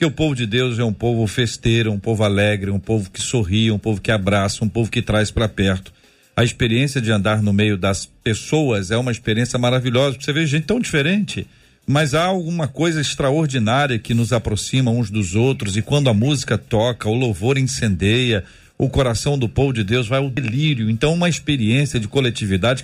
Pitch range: 115-160 Hz